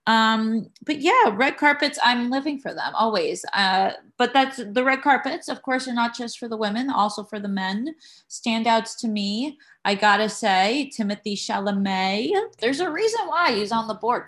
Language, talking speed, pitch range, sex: English, 185 wpm, 185-240 Hz, female